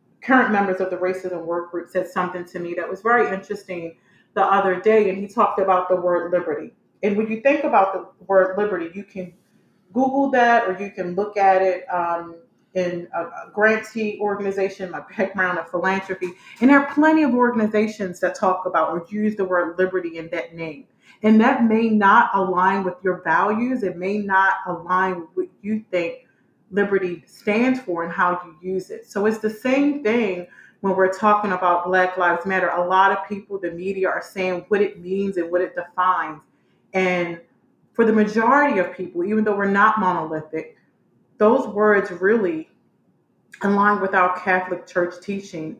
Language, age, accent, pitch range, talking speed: English, 30-49, American, 180-205 Hz, 185 wpm